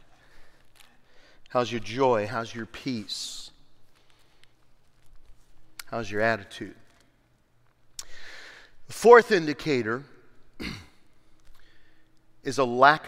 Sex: male